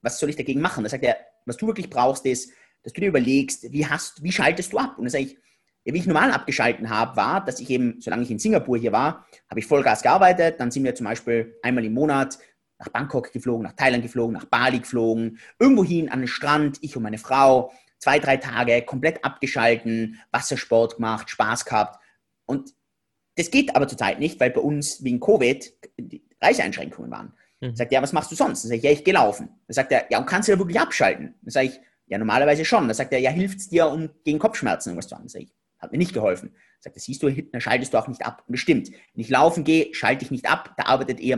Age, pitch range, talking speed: 30-49, 120-160 Hz, 245 wpm